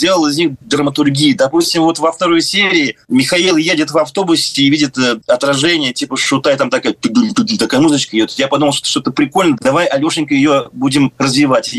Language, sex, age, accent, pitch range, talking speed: Russian, male, 30-49, native, 140-220 Hz, 180 wpm